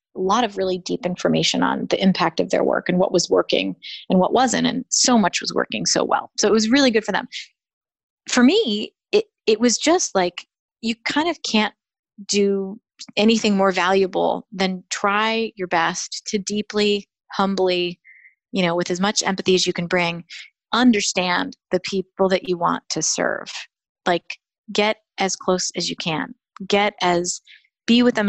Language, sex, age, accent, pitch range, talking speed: English, female, 30-49, American, 185-230 Hz, 180 wpm